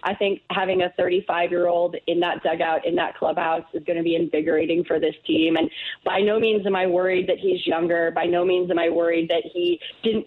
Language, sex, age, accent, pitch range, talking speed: English, female, 30-49, American, 180-220 Hz, 235 wpm